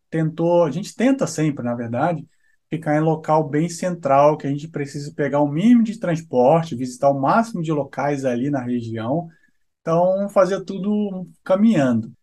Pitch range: 135-185 Hz